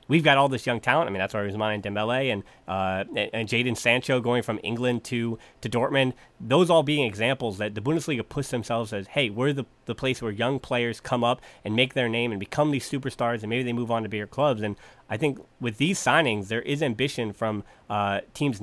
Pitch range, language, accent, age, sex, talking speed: 115-140 Hz, English, American, 30-49, male, 235 wpm